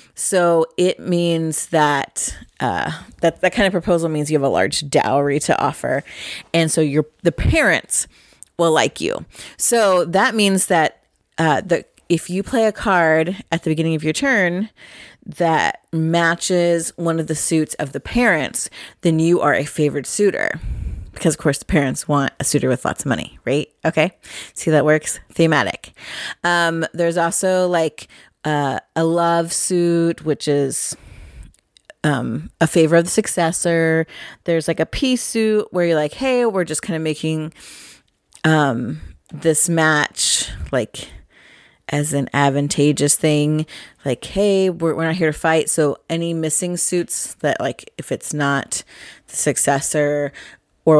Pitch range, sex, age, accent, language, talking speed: 150-175 Hz, female, 30-49, American, English, 160 wpm